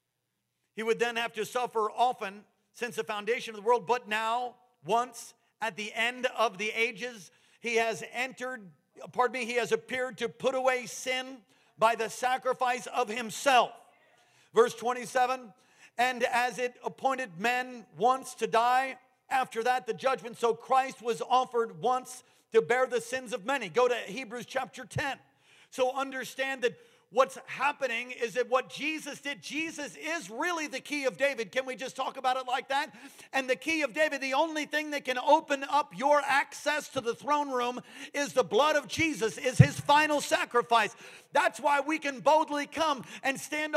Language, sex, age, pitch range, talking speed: English, male, 50-69, 240-300 Hz, 175 wpm